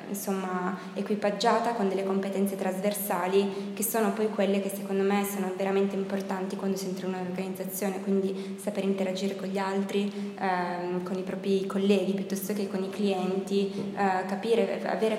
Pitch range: 190-205 Hz